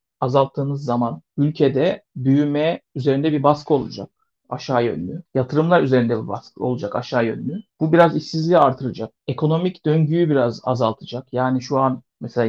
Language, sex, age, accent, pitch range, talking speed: Turkish, male, 60-79, native, 130-160 Hz, 140 wpm